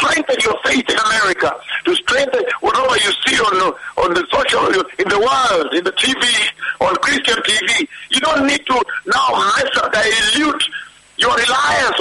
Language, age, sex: English, 60-79, male